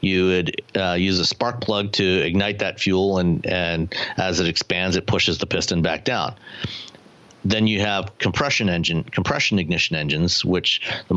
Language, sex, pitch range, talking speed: English, male, 90-105 Hz, 170 wpm